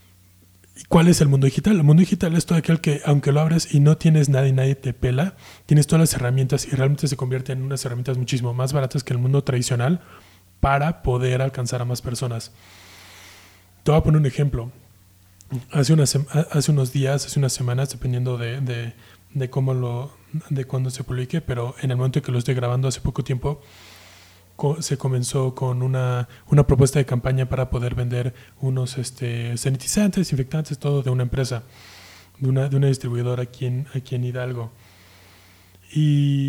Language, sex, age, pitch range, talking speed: Spanish, male, 20-39, 125-150 Hz, 185 wpm